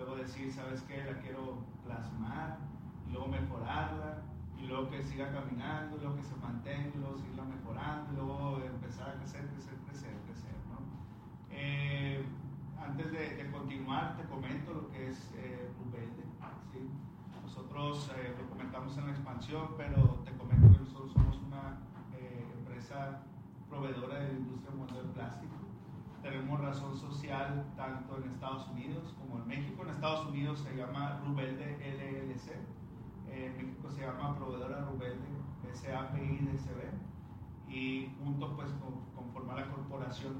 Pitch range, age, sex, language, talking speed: 130-145 Hz, 40-59, male, Spanish, 150 wpm